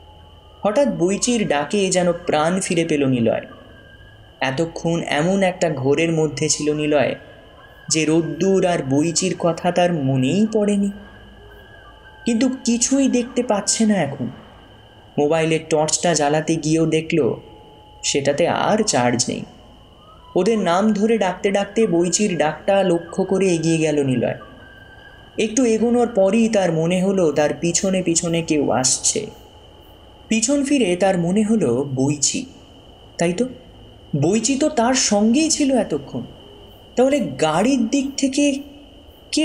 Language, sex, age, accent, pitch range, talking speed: Bengali, male, 20-39, native, 145-200 Hz, 110 wpm